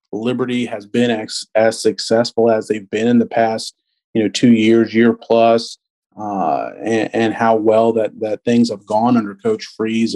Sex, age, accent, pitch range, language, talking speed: male, 40-59, American, 115-135 Hz, English, 185 wpm